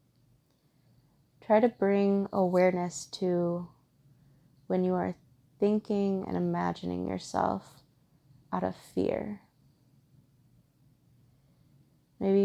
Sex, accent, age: female, American, 20-39